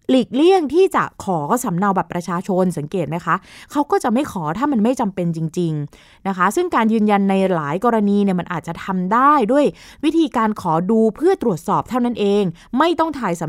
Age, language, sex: 20-39, Thai, female